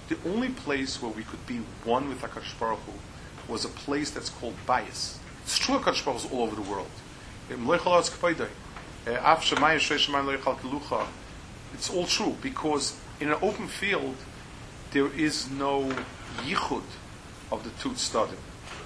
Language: English